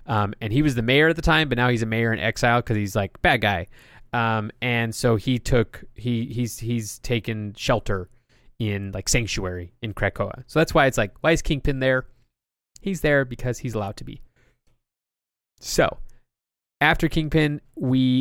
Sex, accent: male, American